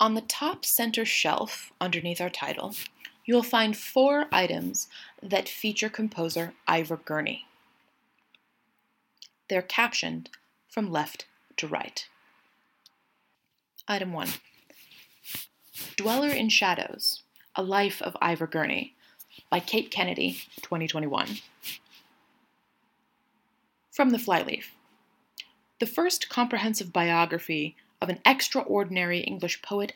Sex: female